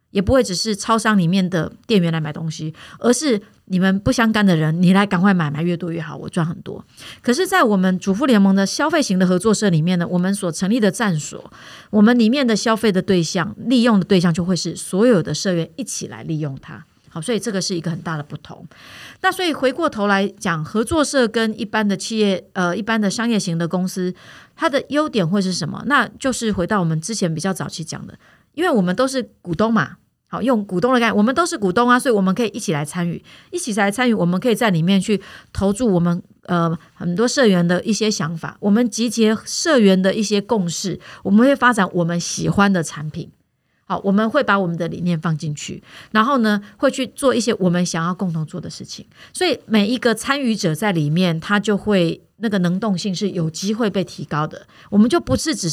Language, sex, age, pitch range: Chinese, female, 30-49, 175-225 Hz